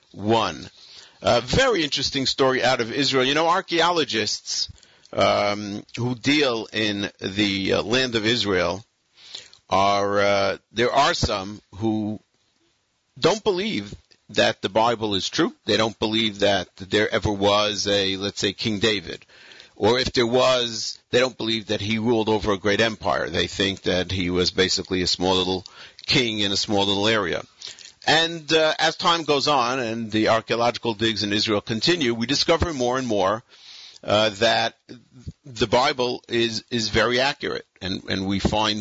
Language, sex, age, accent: English, male, 50-69, American